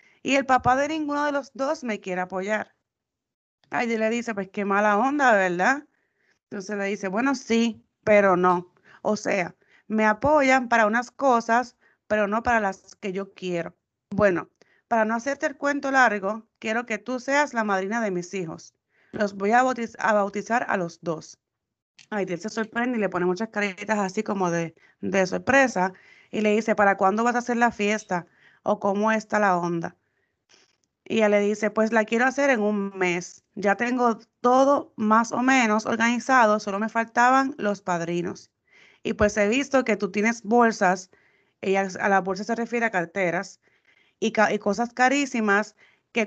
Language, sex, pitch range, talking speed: Spanish, female, 195-235 Hz, 180 wpm